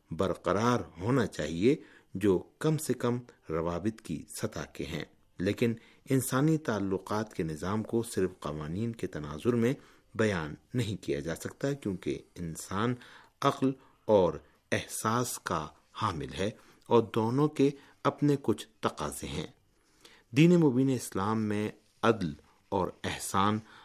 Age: 50-69